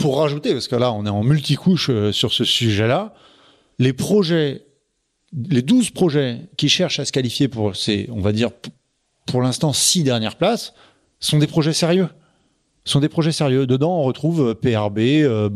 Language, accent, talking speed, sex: French, French, 190 wpm, male